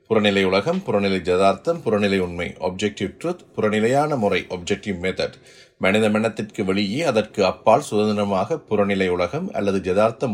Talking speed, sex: 115 wpm, male